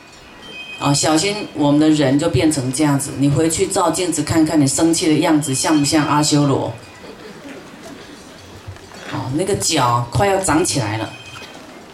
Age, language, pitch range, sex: 30-49, Chinese, 145-205 Hz, female